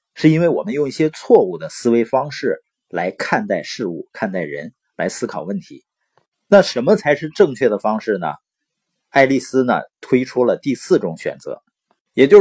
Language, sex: Chinese, male